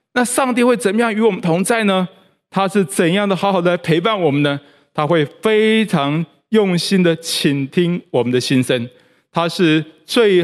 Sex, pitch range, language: male, 160-220 Hz, Chinese